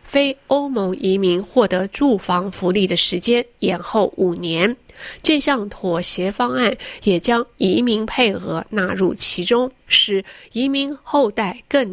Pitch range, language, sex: 190-255 Hz, Chinese, female